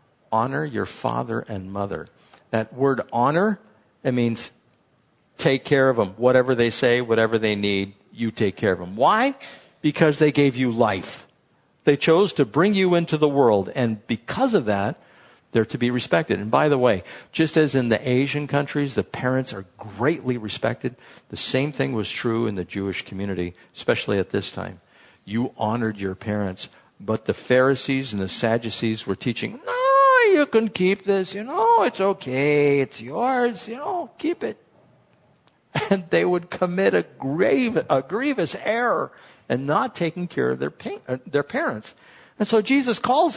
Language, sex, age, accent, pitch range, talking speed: English, male, 50-69, American, 115-195 Hz, 170 wpm